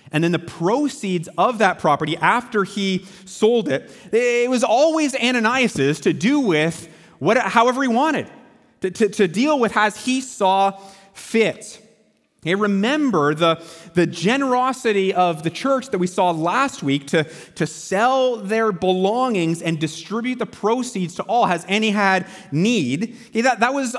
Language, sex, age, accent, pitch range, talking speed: English, male, 30-49, American, 180-250 Hz, 160 wpm